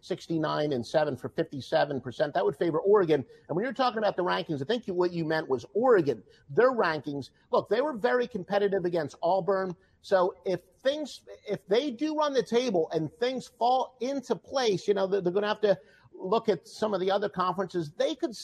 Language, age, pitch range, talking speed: English, 50-69, 155-210 Hz, 205 wpm